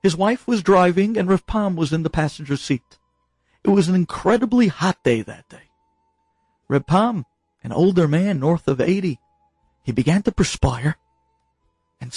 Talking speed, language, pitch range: 155 wpm, English, 145-245 Hz